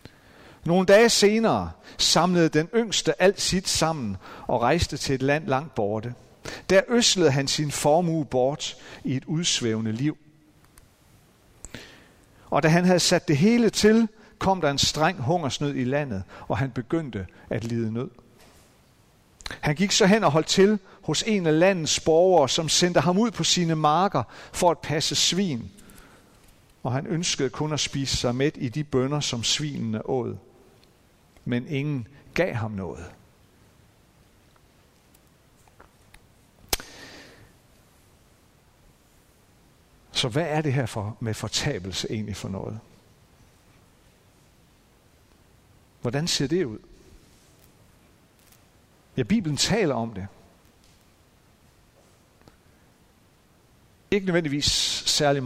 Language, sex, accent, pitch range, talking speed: Danish, male, native, 120-170 Hz, 120 wpm